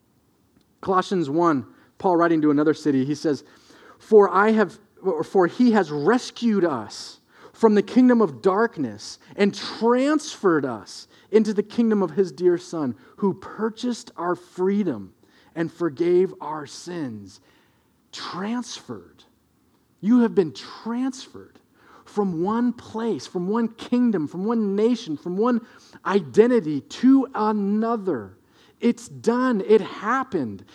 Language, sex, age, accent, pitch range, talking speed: English, male, 40-59, American, 150-225 Hz, 125 wpm